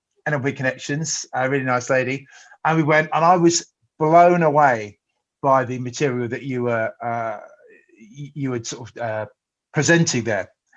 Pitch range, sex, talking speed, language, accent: 130-175 Hz, male, 160 wpm, English, British